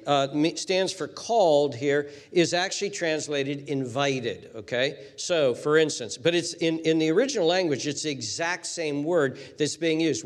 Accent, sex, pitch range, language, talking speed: American, male, 140-170 Hz, English, 165 wpm